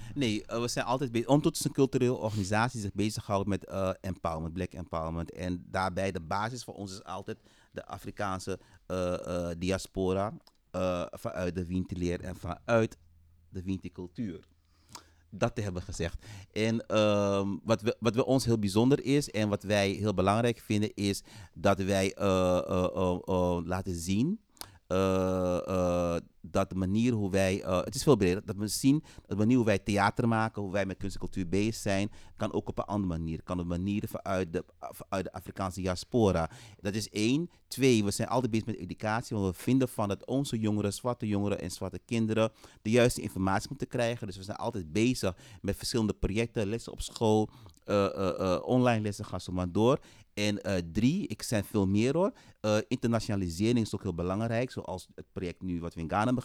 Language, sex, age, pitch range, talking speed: Dutch, male, 30-49, 95-115 Hz, 190 wpm